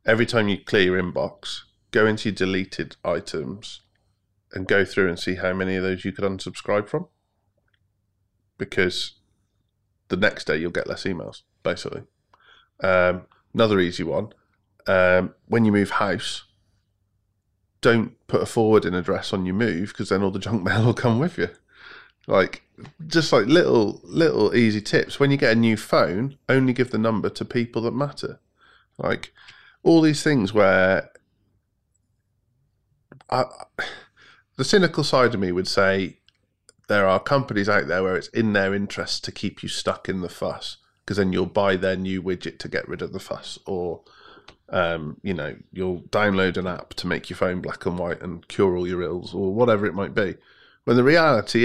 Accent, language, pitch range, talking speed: British, English, 95-110 Hz, 180 wpm